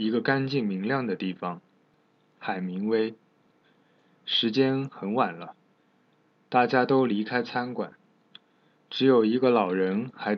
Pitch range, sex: 105-130 Hz, male